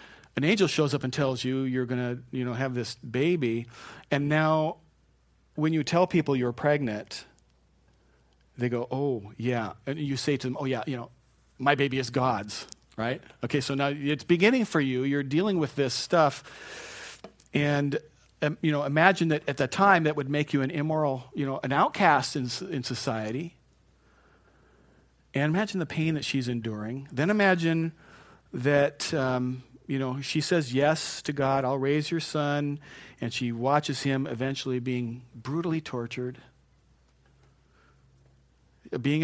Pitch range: 125-155 Hz